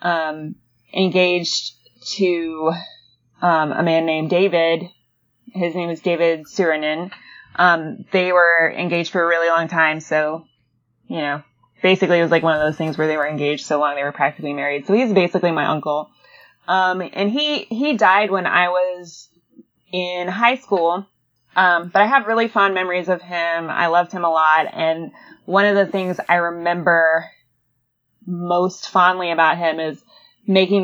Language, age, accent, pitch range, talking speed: English, 20-39, American, 160-190 Hz, 165 wpm